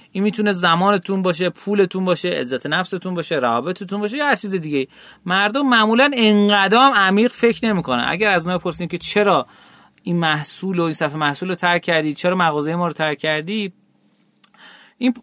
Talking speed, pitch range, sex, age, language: 175 wpm, 150-205 Hz, male, 30-49, Persian